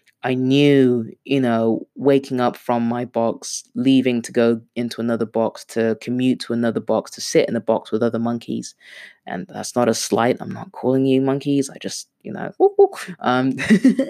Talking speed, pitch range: 190 wpm, 120-165 Hz